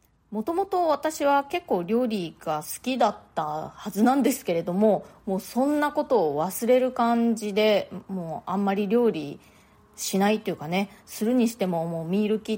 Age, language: 20-39, Japanese